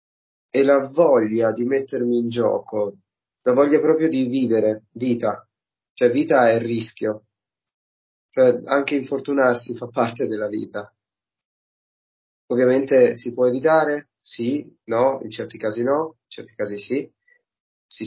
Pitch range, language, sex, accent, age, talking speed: 110-140 Hz, Italian, male, native, 30-49, 135 wpm